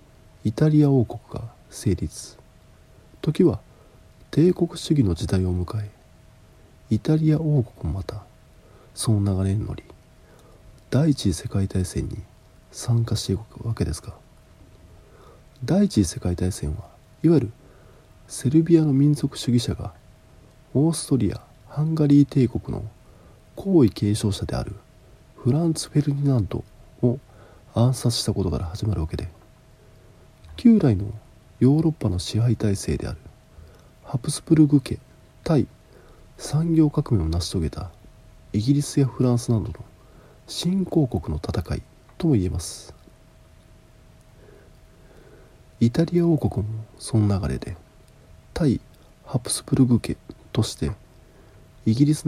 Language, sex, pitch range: Japanese, male, 100-140 Hz